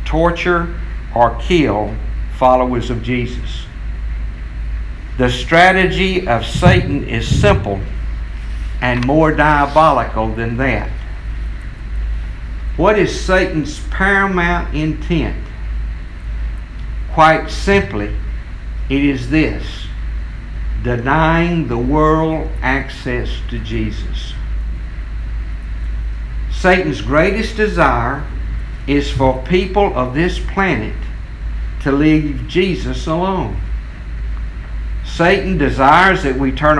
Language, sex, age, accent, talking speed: English, male, 60-79, American, 85 wpm